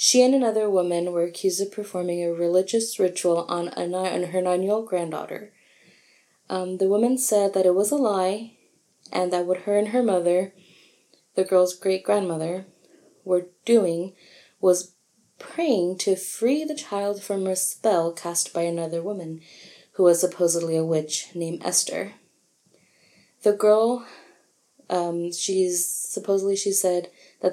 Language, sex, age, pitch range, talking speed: English, female, 20-39, 170-195 Hz, 150 wpm